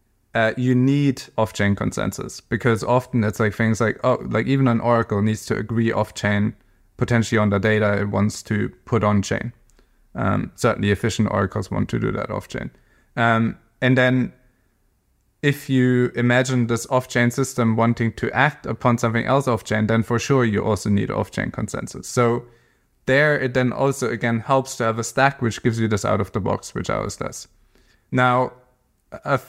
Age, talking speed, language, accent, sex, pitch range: 20-39, 170 wpm, English, German, male, 110-125 Hz